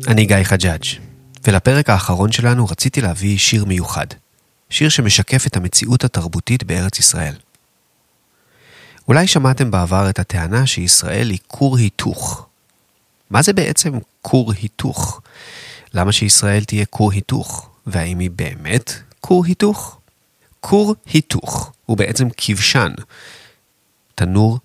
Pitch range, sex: 95-130 Hz, male